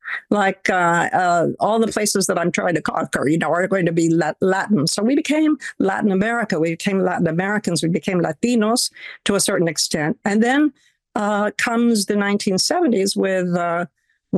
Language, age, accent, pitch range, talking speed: English, 50-69, American, 185-235 Hz, 175 wpm